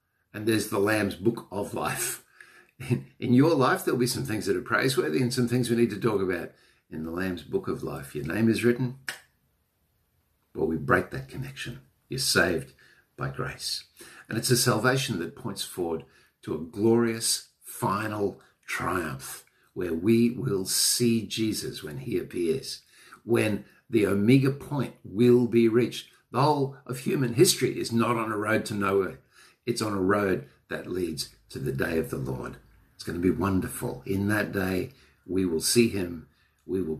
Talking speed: 180 wpm